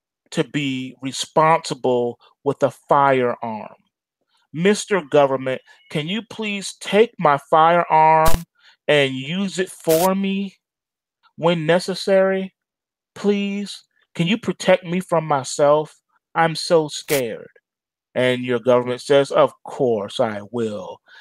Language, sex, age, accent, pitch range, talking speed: English, male, 30-49, American, 125-170 Hz, 110 wpm